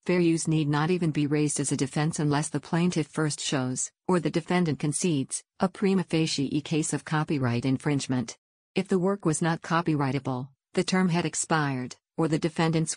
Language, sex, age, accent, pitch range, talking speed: English, female, 50-69, American, 145-170 Hz, 180 wpm